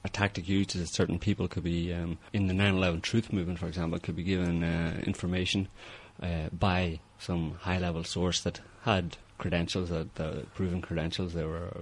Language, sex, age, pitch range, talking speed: English, male, 30-49, 85-100 Hz, 195 wpm